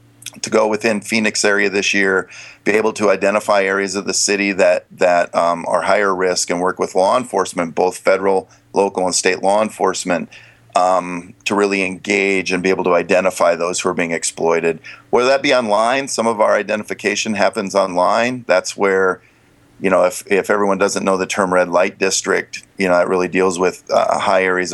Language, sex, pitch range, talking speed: English, male, 90-105 Hz, 195 wpm